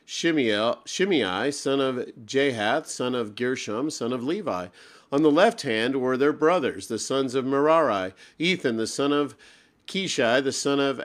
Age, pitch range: 50-69, 120-145 Hz